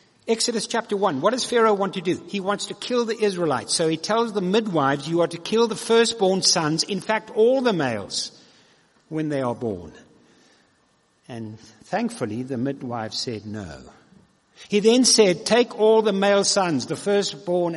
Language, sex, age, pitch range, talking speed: English, male, 60-79, 140-225 Hz, 175 wpm